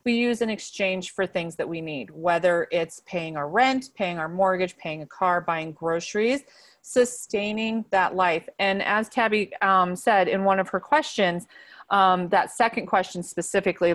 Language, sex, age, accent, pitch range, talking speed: English, female, 30-49, American, 175-220 Hz, 170 wpm